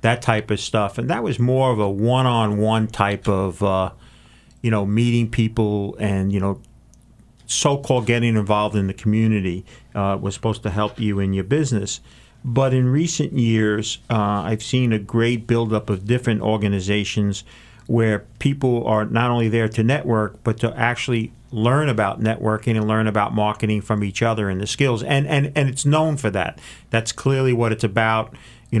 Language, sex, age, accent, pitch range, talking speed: English, male, 50-69, American, 105-120 Hz, 180 wpm